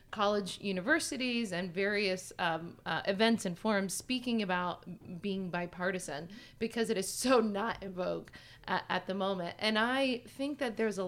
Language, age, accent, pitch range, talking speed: English, 30-49, American, 175-210 Hz, 160 wpm